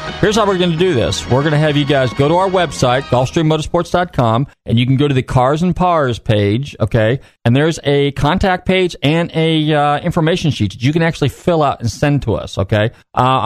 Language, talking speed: English, 225 wpm